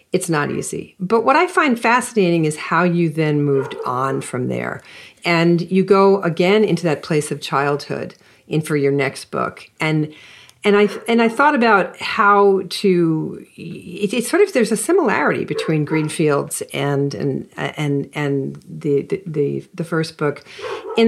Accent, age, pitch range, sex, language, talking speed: American, 50-69, 145-190 Hz, female, English, 165 wpm